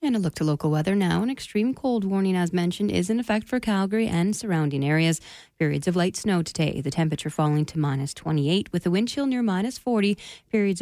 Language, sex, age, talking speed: English, female, 30-49, 220 wpm